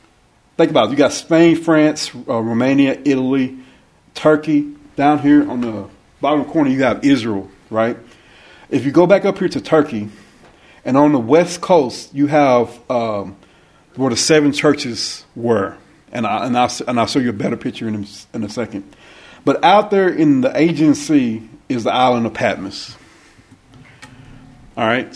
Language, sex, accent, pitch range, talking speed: English, male, American, 115-155 Hz, 165 wpm